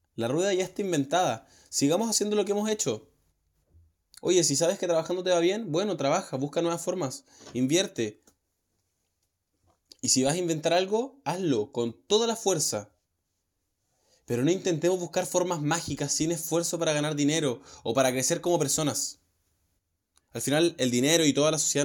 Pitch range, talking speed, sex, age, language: 115-170 Hz, 165 wpm, male, 10-29, Spanish